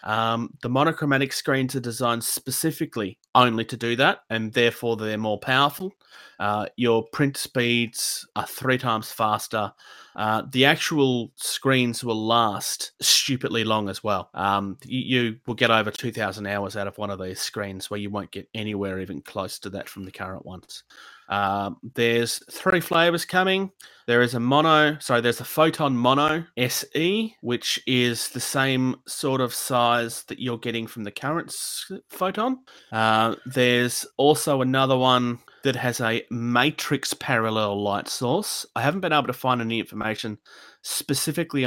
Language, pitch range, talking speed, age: English, 110-140 Hz, 160 wpm, 30-49